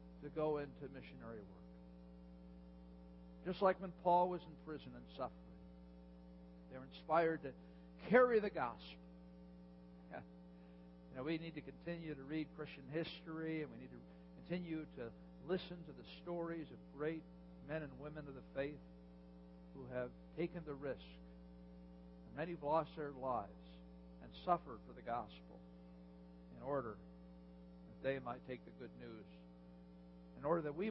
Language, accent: English, American